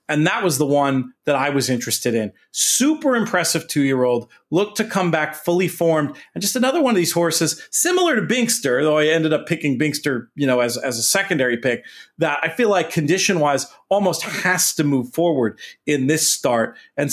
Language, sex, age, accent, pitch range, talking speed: English, male, 30-49, American, 140-185 Hz, 195 wpm